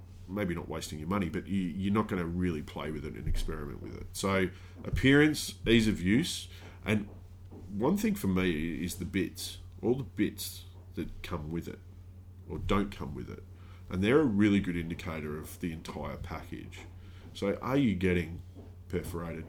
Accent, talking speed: Australian, 180 wpm